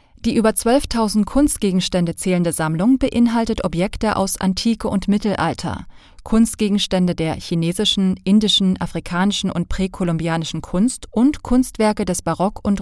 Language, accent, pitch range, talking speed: German, German, 170-220 Hz, 115 wpm